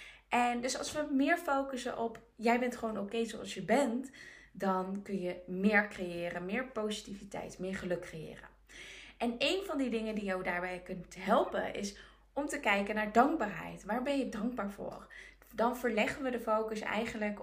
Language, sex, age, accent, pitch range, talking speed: Dutch, female, 20-39, Dutch, 195-245 Hz, 175 wpm